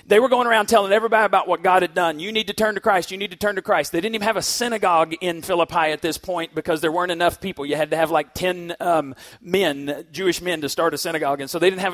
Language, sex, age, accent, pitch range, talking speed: English, male, 40-59, American, 170-215 Hz, 290 wpm